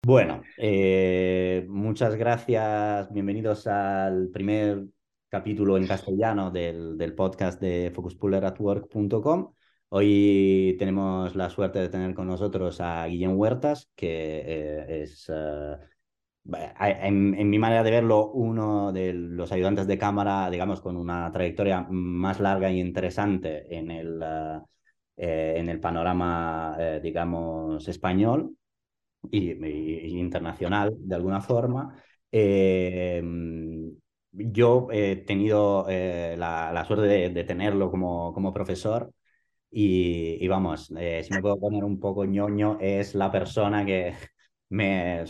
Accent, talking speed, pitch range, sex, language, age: Spanish, 130 wpm, 90-100 Hz, male, English, 30-49